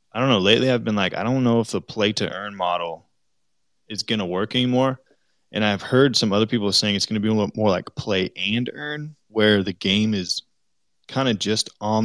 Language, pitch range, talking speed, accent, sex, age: English, 95-115 Hz, 210 wpm, American, male, 20-39